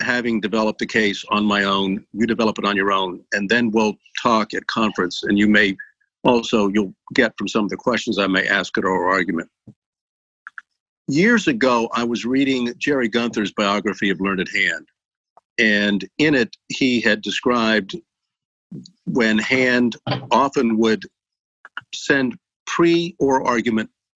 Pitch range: 105-125 Hz